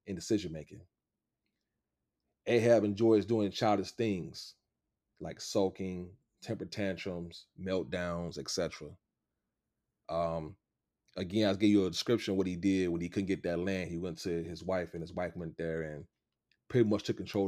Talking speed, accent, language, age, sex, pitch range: 160 wpm, American, English, 30-49, male, 85-105 Hz